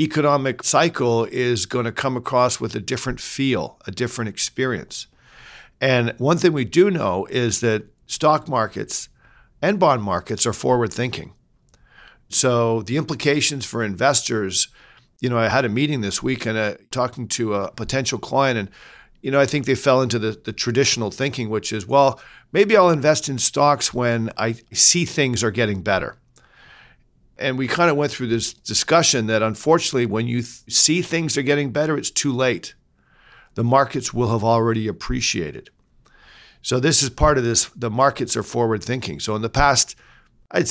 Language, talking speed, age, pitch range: English, 175 wpm, 50-69, 115-140 Hz